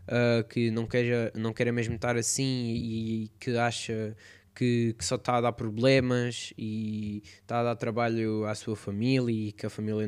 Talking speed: 185 wpm